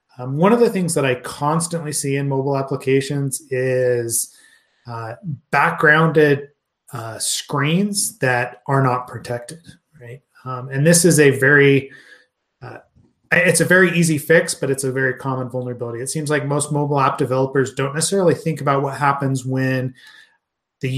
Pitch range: 130-160 Hz